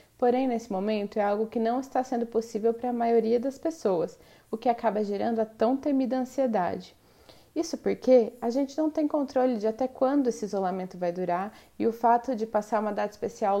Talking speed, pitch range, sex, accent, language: 200 wpm, 220-260 Hz, female, Brazilian, Portuguese